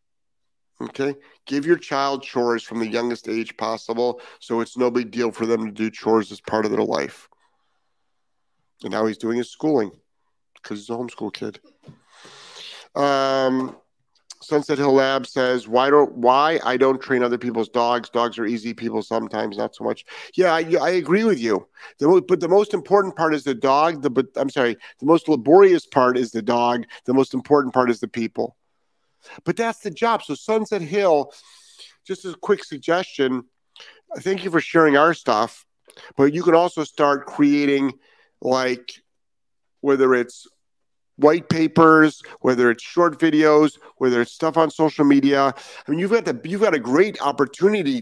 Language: English